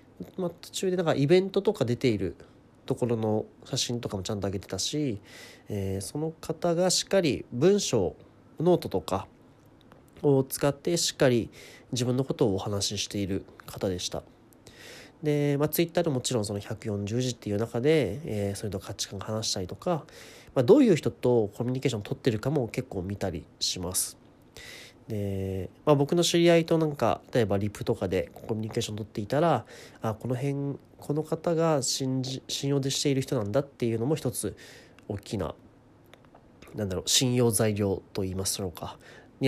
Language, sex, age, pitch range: Japanese, male, 30-49, 105-145 Hz